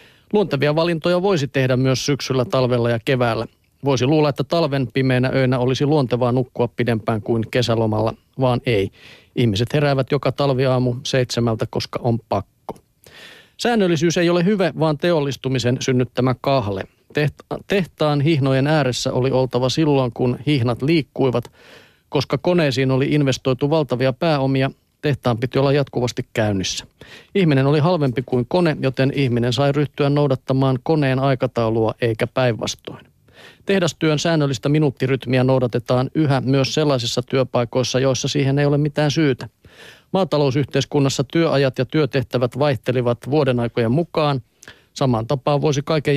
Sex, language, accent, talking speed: male, Finnish, native, 130 wpm